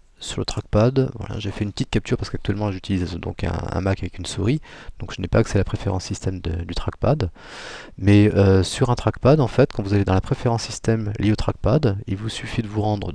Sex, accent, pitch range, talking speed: male, French, 90-110 Hz, 235 wpm